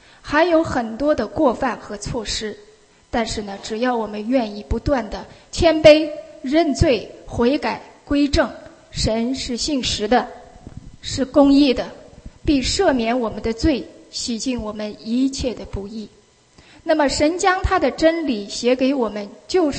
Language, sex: English, female